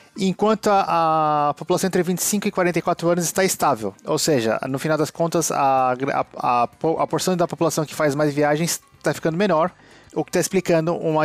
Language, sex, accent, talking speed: Portuguese, male, Brazilian, 180 wpm